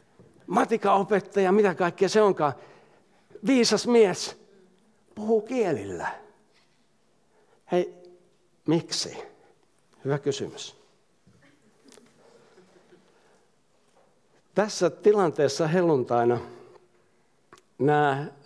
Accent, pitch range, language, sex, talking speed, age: native, 145-210 Hz, Finnish, male, 50 wpm, 60-79